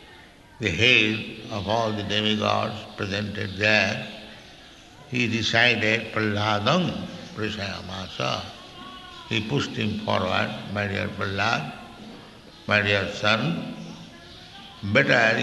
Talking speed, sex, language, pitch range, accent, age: 90 wpm, male, English, 100-120 Hz, Indian, 60-79